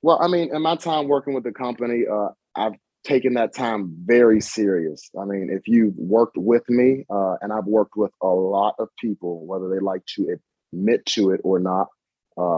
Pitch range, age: 90-110 Hz, 30-49